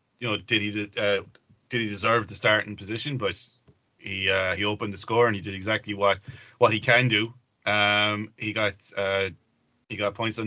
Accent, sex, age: Irish, male, 20-39